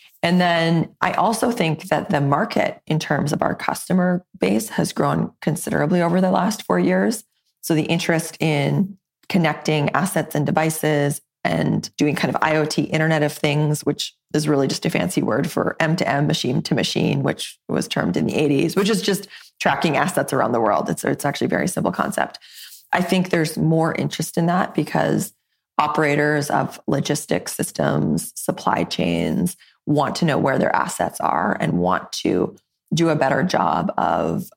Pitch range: 150-180 Hz